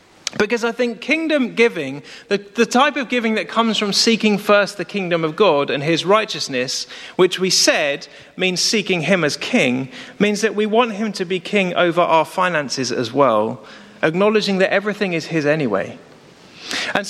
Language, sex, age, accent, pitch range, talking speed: English, male, 30-49, British, 160-220 Hz, 175 wpm